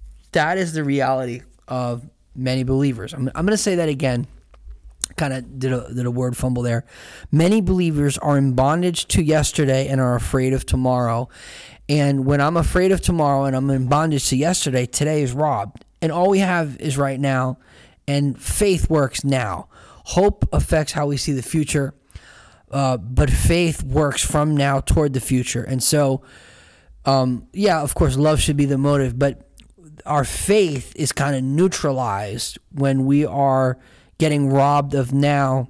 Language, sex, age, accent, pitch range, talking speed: English, male, 20-39, American, 130-150 Hz, 170 wpm